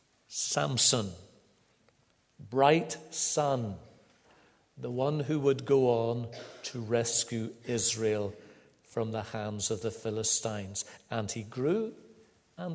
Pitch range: 115-155 Hz